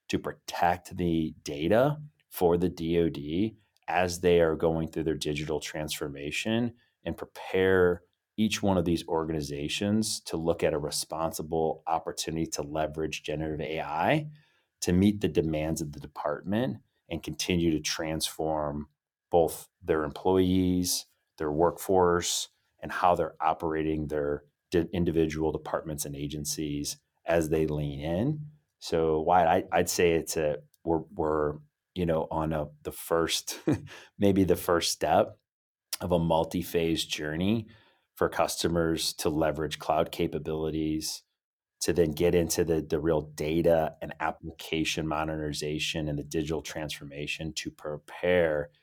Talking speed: 130 wpm